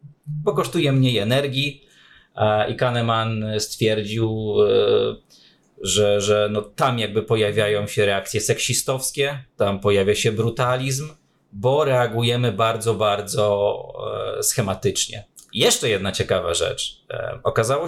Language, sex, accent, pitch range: Polish, male, native, 105-130 Hz